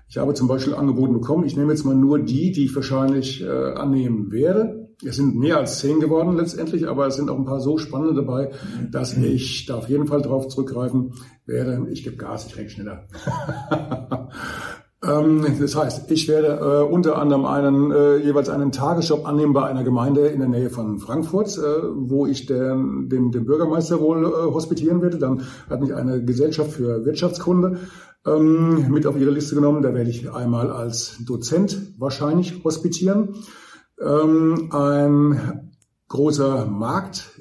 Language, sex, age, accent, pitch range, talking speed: German, male, 50-69, German, 135-160 Hz, 160 wpm